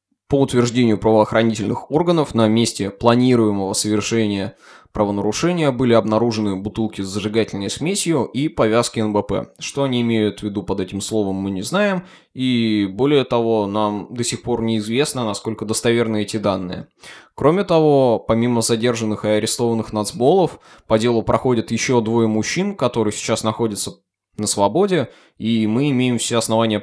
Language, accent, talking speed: Russian, native, 145 wpm